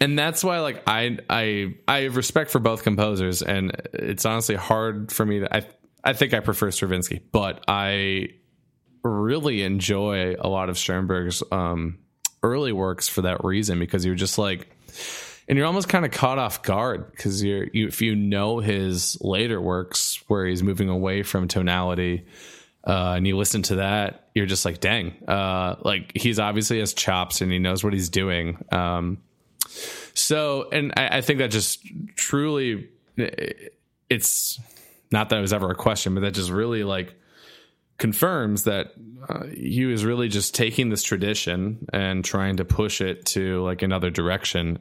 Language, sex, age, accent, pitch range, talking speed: English, male, 20-39, American, 95-115 Hz, 175 wpm